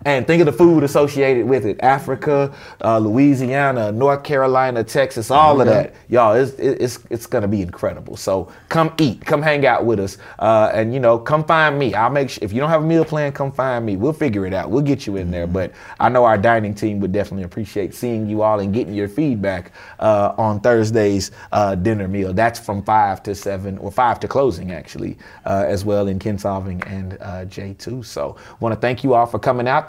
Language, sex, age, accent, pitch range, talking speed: English, male, 30-49, American, 100-140 Hz, 220 wpm